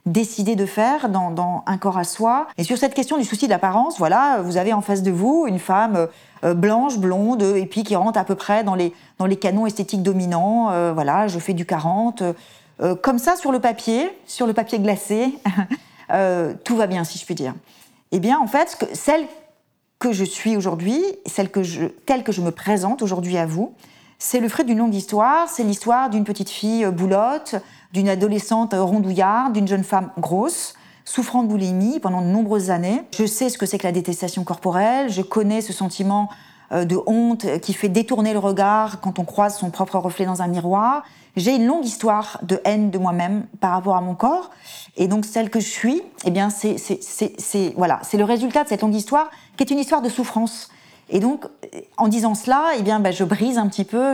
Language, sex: French, female